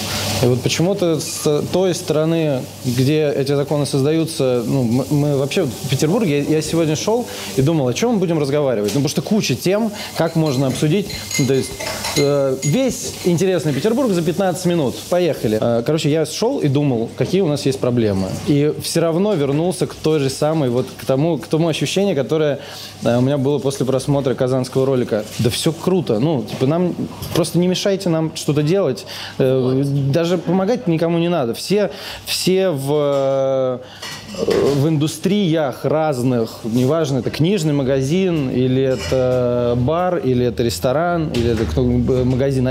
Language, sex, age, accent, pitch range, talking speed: Russian, male, 20-39, native, 130-165 Hz, 155 wpm